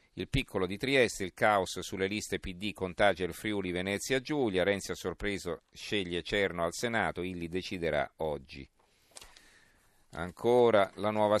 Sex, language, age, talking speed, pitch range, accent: male, Italian, 50-69, 145 wpm, 85-105 Hz, native